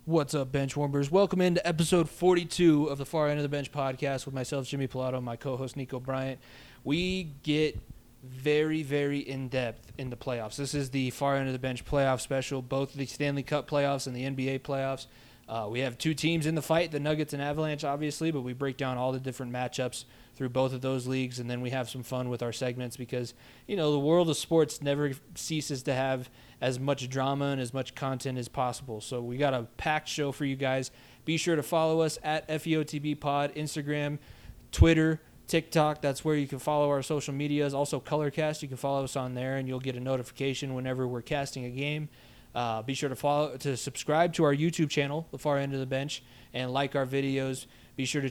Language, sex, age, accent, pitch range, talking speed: English, male, 20-39, American, 130-145 Hz, 220 wpm